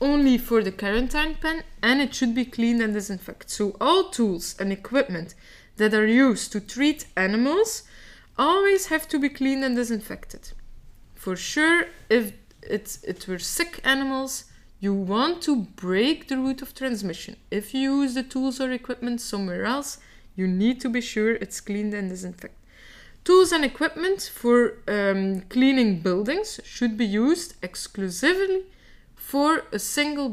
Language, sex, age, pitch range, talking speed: English, female, 20-39, 205-270 Hz, 155 wpm